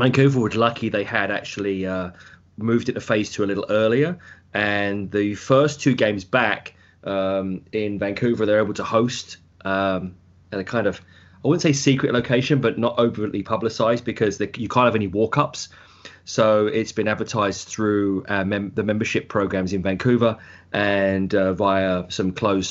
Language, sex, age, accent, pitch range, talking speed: English, male, 30-49, British, 95-115 Hz, 175 wpm